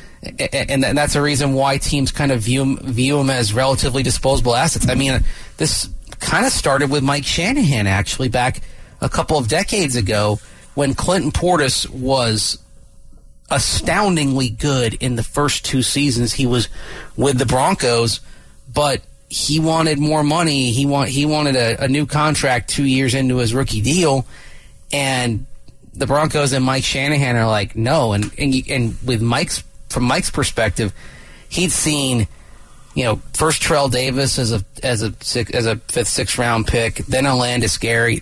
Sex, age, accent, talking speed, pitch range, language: male, 30-49, American, 165 wpm, 115-135 Hz, English